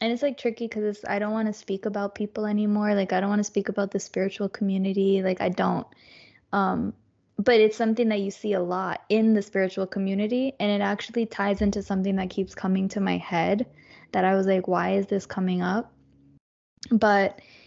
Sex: female